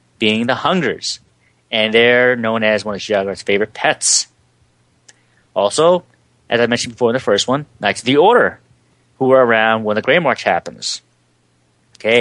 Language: English